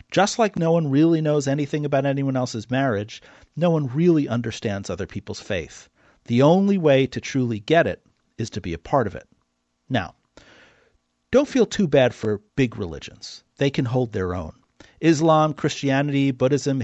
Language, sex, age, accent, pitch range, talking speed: English, male, 40-59, American, 120-170 Hz, 170 wpm